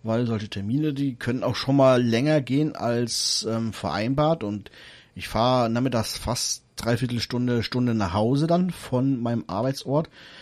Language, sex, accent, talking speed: German, male, German, 155 wpm